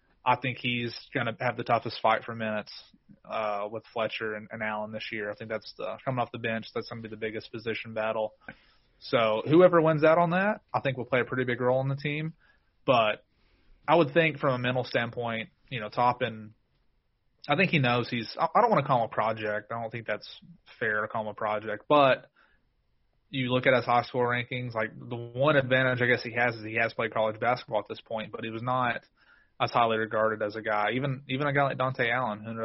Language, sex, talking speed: English, male, 245 wpm